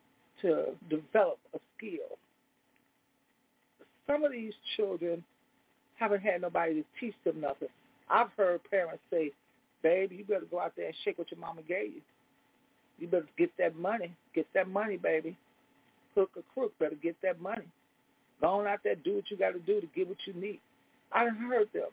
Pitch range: 185-260 Hz